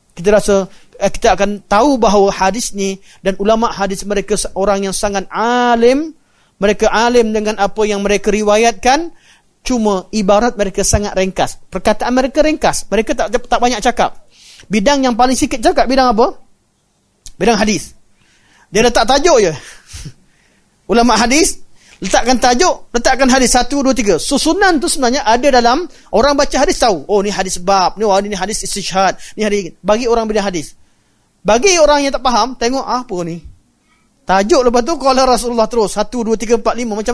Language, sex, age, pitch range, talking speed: Malay, male, 30-49, 200-260 Hz, 170 wpm